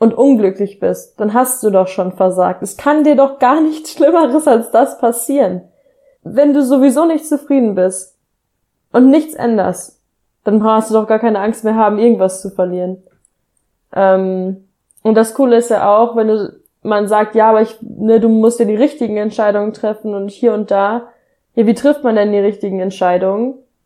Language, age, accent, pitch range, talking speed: German, 20-39, German, 195-235 Hz, 185 wpm